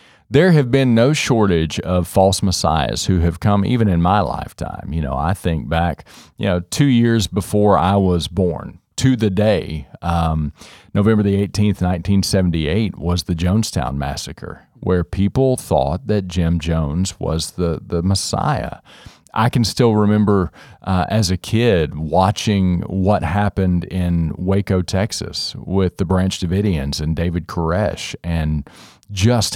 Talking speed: 150 wpm